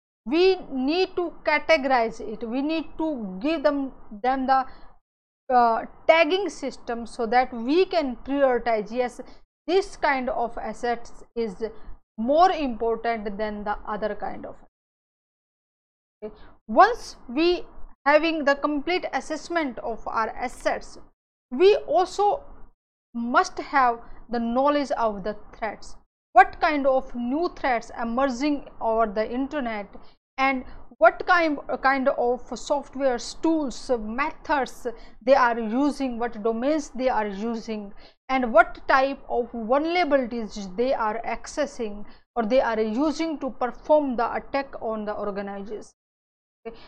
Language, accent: English, Indian